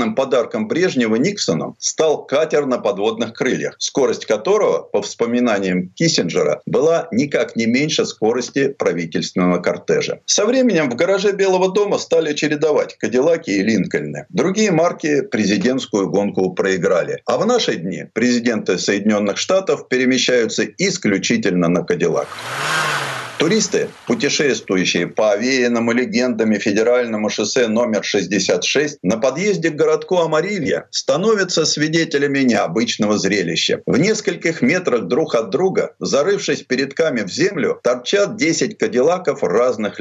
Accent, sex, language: native, male, Russian